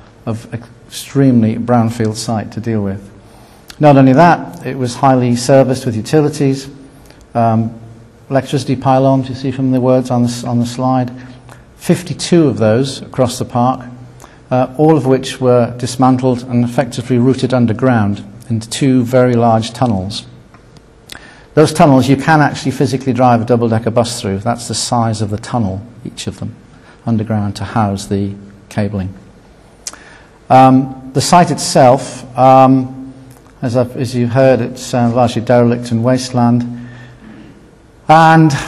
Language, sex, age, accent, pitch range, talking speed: English, male, 50-69, British, 115-135 Hz, 140 wpm